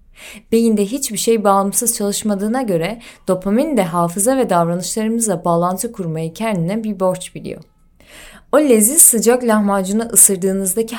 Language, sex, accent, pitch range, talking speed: Turkish, female, native, 180-235 Hz, 120 wpm